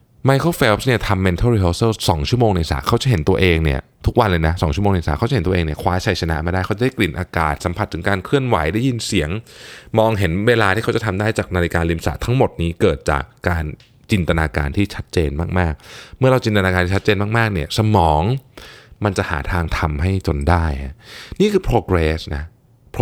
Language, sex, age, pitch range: Thai, male, 20-39, 85-115 Hz